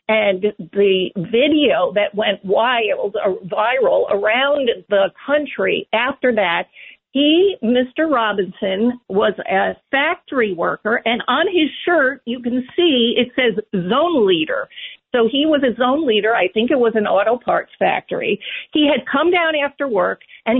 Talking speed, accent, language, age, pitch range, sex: 150 wpm, American, English, 50-69, 210-285 Hz, female